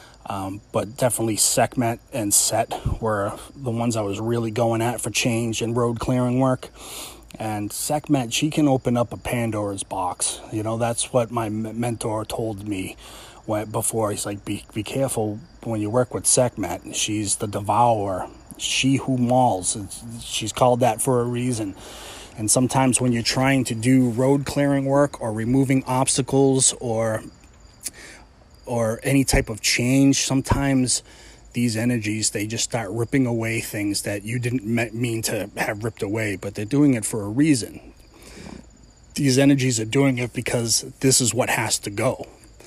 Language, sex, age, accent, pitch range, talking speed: English, male, 30-49, American, 110-130 Hz, 165 wpm